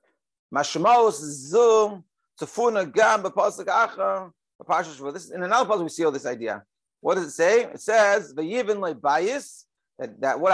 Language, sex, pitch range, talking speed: English, male, 155-220 Hz, 110 wpm